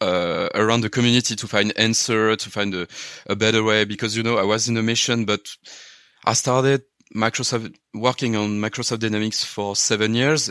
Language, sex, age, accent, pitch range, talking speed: English, male, 30-49, French, 100-115 Hz, 185 wpm